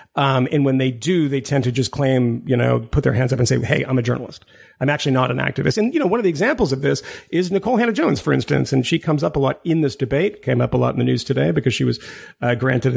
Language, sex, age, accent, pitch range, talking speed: English, male, 40-59, American, 130-175 Hz, 295 wpm